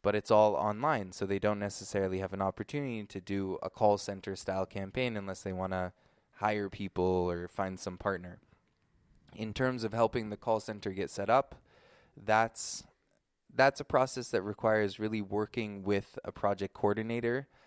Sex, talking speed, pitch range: male, 170 wpm, 105-145 Hz